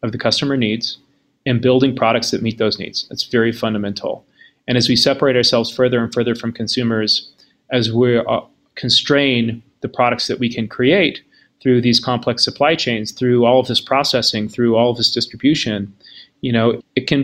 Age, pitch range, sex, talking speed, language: 30-49, 110-125 Hz, male, 185 wpm, English